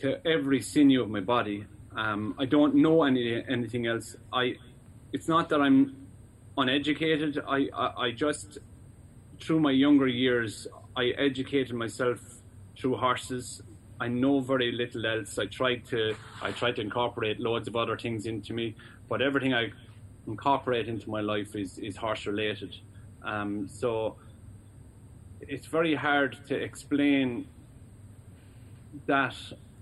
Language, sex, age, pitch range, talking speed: English, male, 30-49, 110-130 Hz, 140 wpm